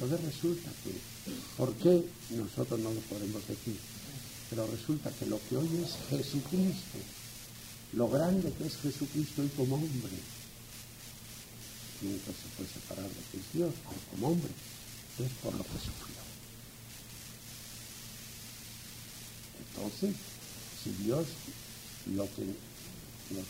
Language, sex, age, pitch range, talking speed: English, male, 60-79, 110-125 Hz, 125 wpm